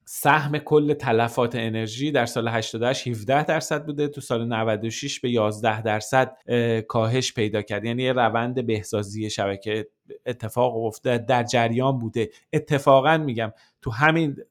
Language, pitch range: Persian, 115-140 Hz